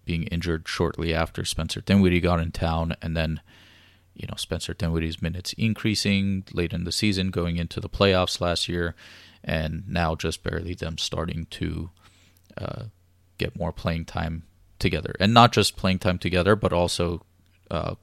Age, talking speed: 30-49, 165 wpm